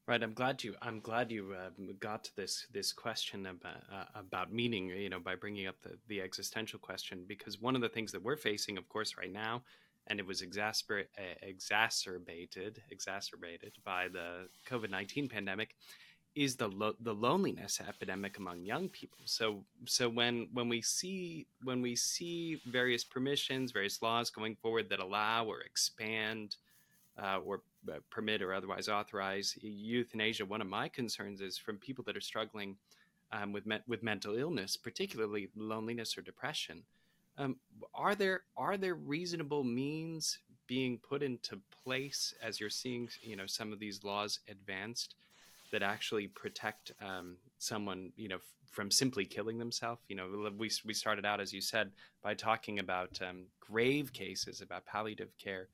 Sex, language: male, English